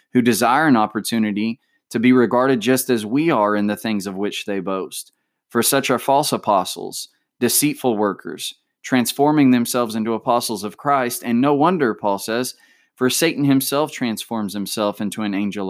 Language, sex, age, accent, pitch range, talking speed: English, male, 20-39, American, 100-120 Hz, 170 wpm